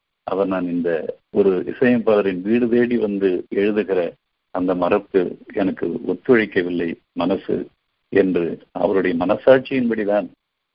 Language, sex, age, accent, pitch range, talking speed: Tamil, male, 50-69, native, 95-125 Hz, 95 wpm